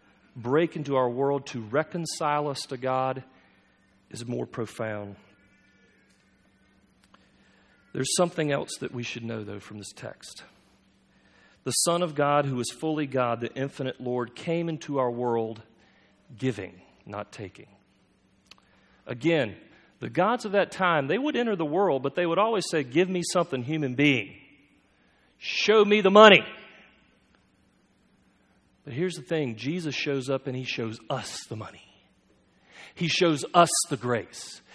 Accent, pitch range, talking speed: American, 115-170 Hz, 145 wpm